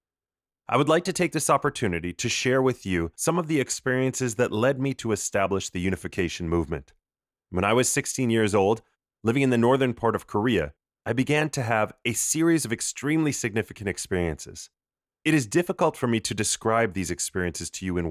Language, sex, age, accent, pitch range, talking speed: English, male, 30-49, American, 95-125 Hz, 190 wpm